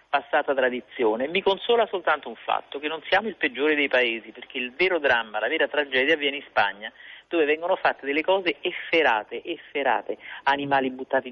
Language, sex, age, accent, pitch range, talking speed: Italian, male, 50-69, native, 130-210 Hz, 175 wpm